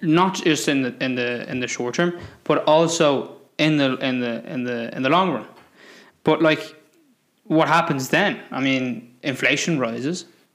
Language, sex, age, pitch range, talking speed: English, male, 20-39, 125-155 Hz, 175 wpm